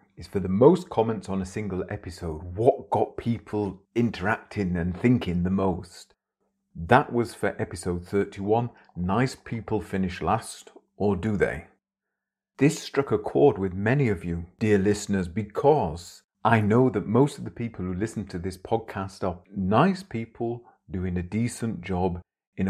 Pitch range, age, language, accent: 95-115 Hz, 40-59, English, British